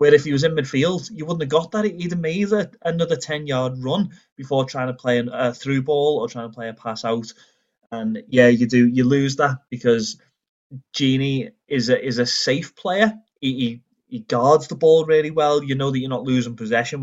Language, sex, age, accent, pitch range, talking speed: English, male, 30-49, British, 120-150 Hz, 220 wpm